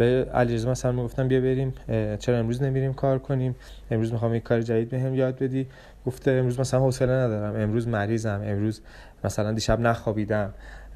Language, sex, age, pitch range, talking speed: Persian, male, 20-39, 110-130 Hz, 165 wpm